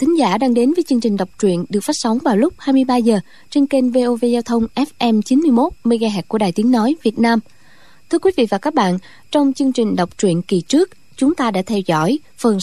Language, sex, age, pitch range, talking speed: Vietnamese, female, 20-39, 200-265 Hz, 240 wpm